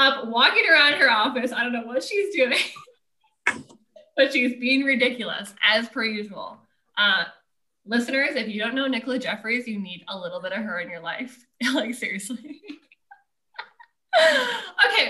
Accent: American